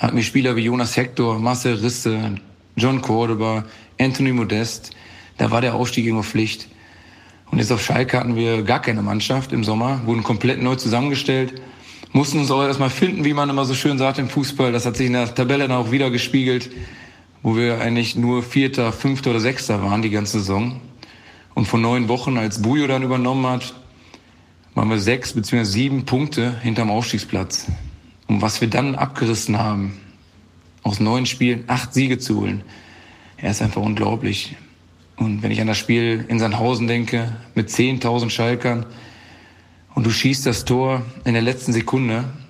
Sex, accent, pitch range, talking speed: male, German, 110-125 Hz, 175 wpm